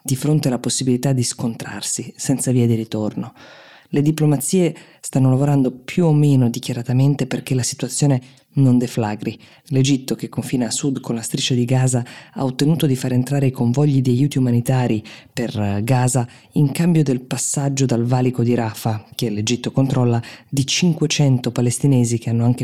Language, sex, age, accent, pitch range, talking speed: Italian, female, 20-39, native, 115-135 Hz, 165 wpm